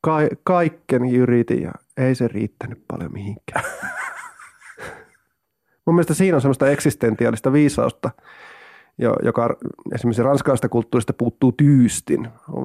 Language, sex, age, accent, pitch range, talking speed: Finnish, male, 30-49, native, 130-180 Hz, 95 wpm